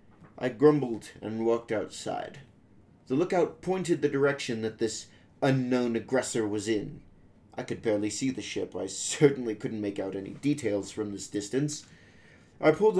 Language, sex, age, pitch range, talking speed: English, male, 30-49, 110-140 Hz, 155 wpm